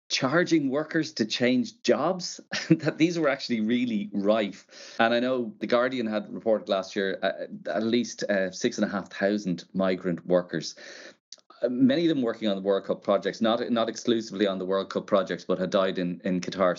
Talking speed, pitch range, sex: 190 wpm, 90-125 Hz, male